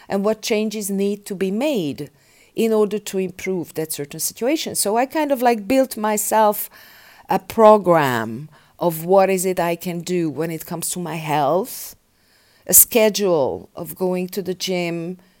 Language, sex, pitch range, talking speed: English, female, 165-200 Hz, 170 wpm